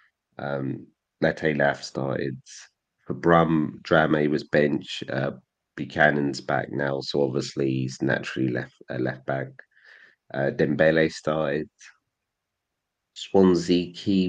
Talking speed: 110 wpm